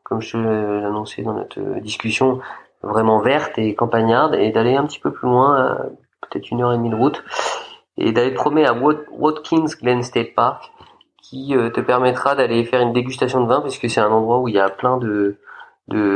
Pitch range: 105-125 Hz